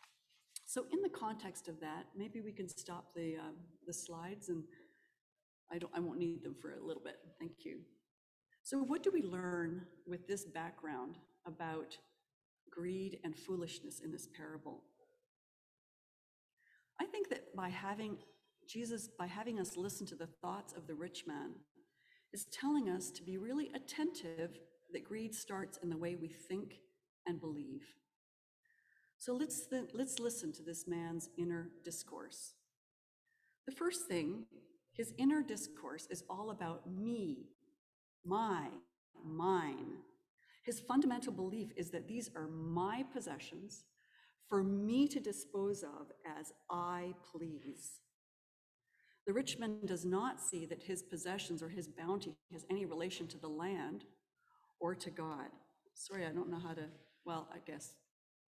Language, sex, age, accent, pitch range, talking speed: English, female, 40-59, American, 170-235 Hz, 145 wpm